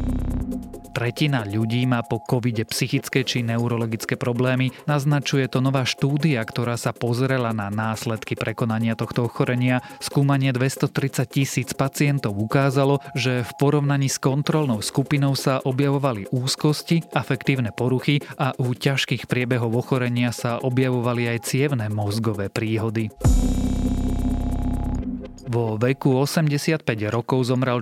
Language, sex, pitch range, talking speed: Slovak, male, 115-135 Hz, 115 wpm